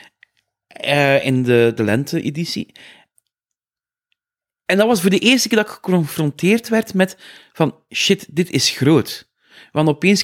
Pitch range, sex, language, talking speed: 130-175 Hz, male, Dutch, 145 wpm